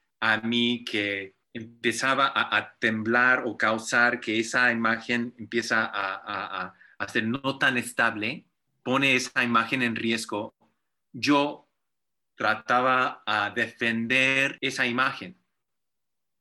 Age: 40-59